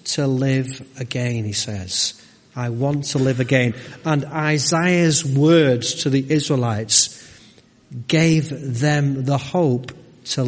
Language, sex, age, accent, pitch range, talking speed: English, male, 40-59, British, 125-160 Hz, 120 wpm